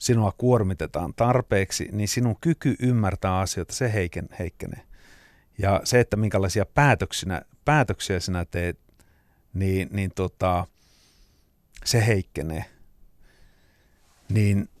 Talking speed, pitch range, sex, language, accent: 95 wpm, 95-120 Hz, male, Finnish, native